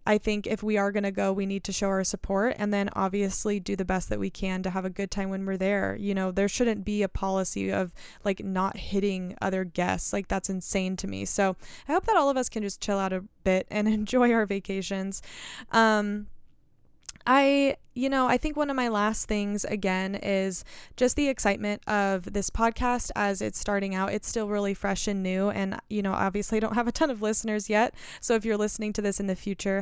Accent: American